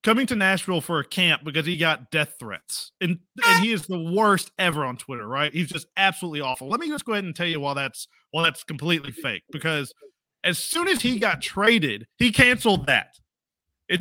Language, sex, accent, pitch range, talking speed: English, male, American, 160-235 Hz, 215 wpm